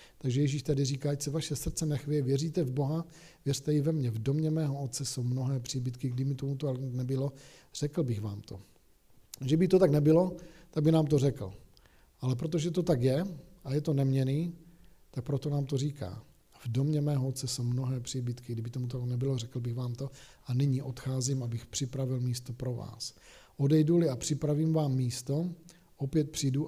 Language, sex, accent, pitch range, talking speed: Czech, male, native, 125-150 Hz, 190 wpm